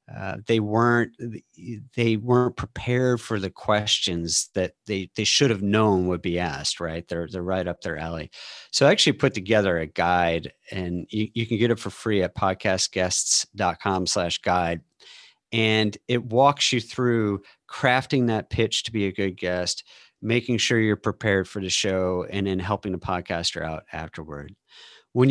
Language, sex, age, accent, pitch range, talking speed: English, male, 40-59, American, 95-120 Hz, 170 wpm